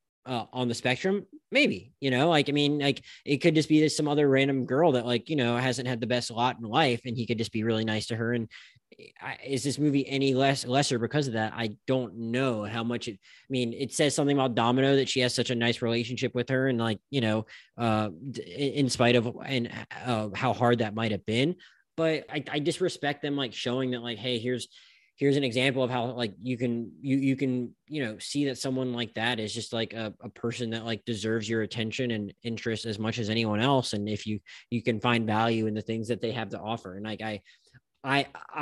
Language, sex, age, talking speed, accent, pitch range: English, male, 20-39, 240 wpm, American, 115-135 Hz